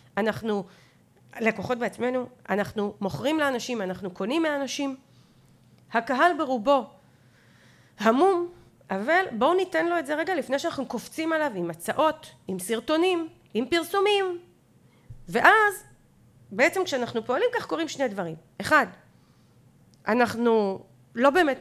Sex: female